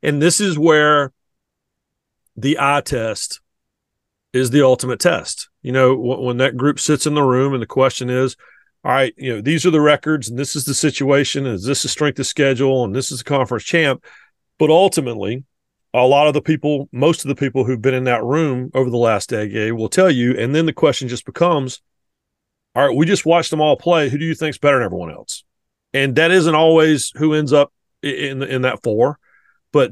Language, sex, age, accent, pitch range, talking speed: English, male, 40-59, American, 130-155 Hz, 220 wpm